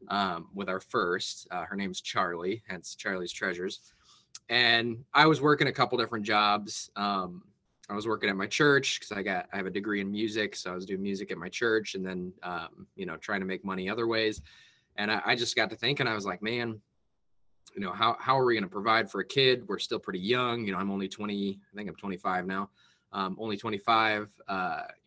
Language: English